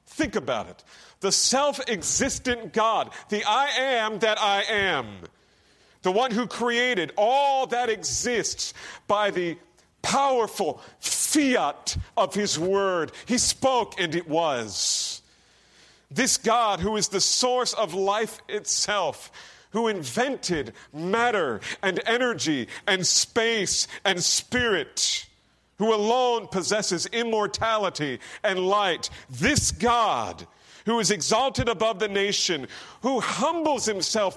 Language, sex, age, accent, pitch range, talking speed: English, male, 40-59, American, 175-240 Hz, 115 wpm